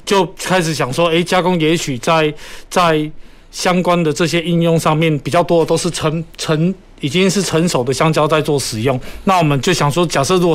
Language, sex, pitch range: Chinese, male, 145-175 Hz